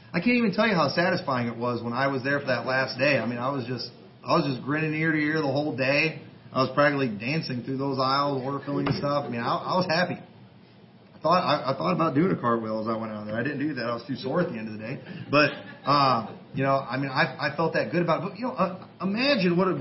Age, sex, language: 30-49, male, English